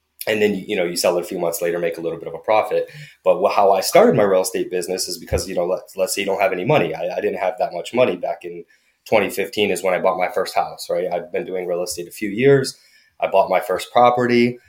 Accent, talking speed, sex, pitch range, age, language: American, 280 wpm, male, 90-130 Hz, 20-39, English